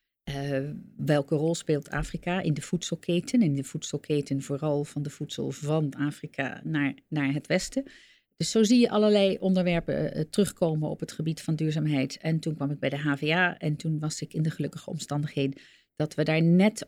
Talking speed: 190 wpm